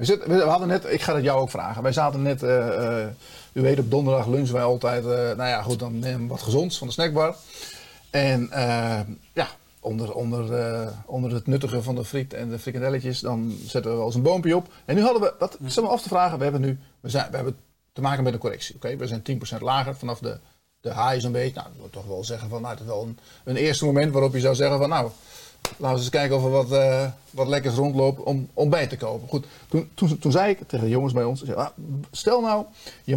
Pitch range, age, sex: 120-140 Hz, 40-59, male